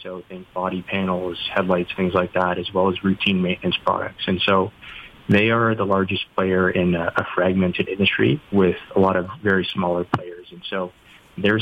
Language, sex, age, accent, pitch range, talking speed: English, male, 20-39, American, 90-100 Hz, 190 wpm